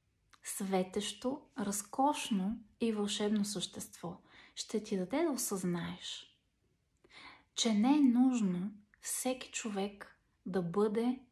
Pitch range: 195-245 Hz